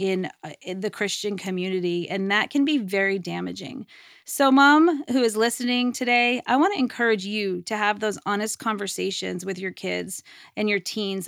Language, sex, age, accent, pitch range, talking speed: English, female, 30-49, American, 185-225 Hz, 170 wpm